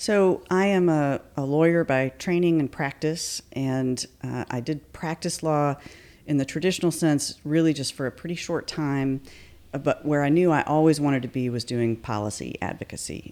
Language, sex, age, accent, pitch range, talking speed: English, female, 40-59, American, 110-140 Hz, 180 wpm